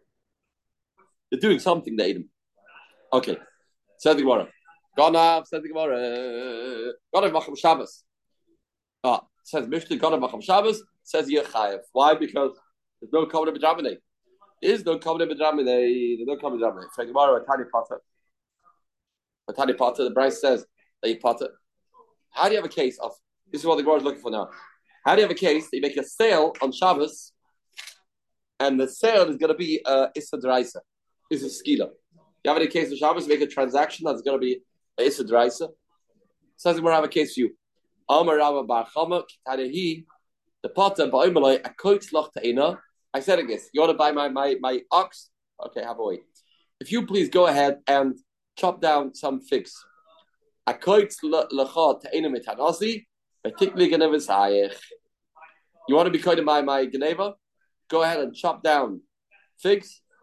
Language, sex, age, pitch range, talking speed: English, male, 40-59, 140-185 Hz, 160 wpm